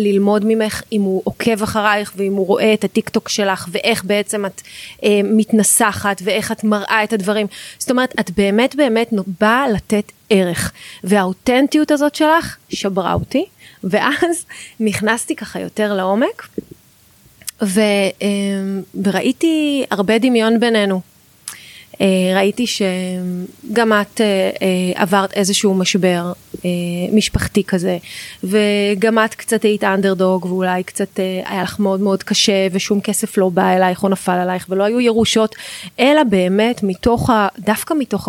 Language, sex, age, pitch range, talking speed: Hebrew, female, 20-39, 190-225 Hz, 125 wpm